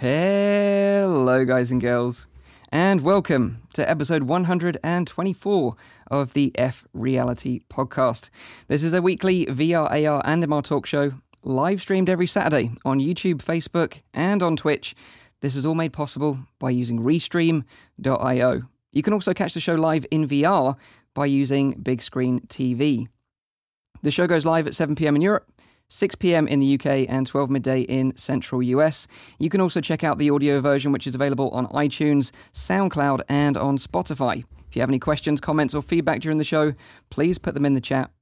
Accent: British